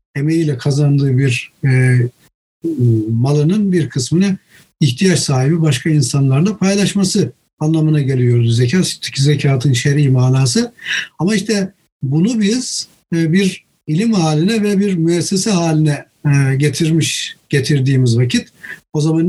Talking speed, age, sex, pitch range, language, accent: 110 wpm, 60-79, male, 145-185 Hz, Turkish, native